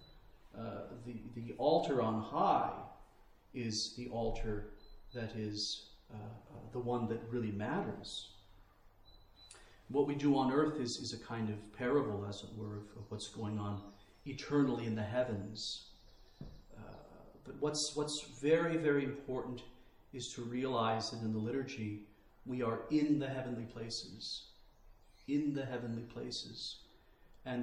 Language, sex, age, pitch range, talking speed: English, male, 40-59, 110-130 Hz, 145 wpm